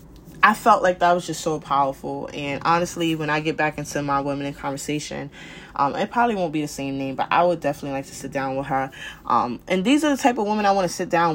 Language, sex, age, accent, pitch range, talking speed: English, female, 20-39, American, 145-175 Hz, 265 wpm